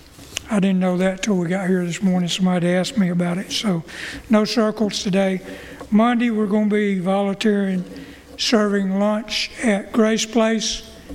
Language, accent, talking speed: English, American, 160 wpm